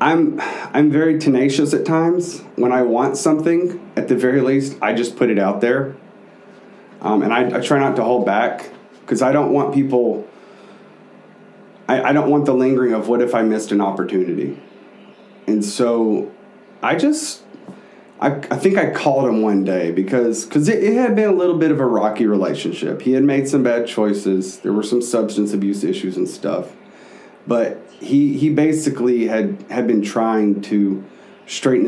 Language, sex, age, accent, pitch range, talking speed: English, male, 30-49, American, 100-140 Hz, 180 wpm